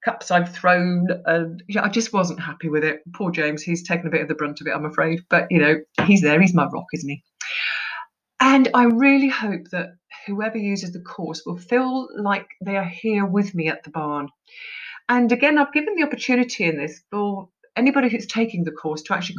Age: 40-59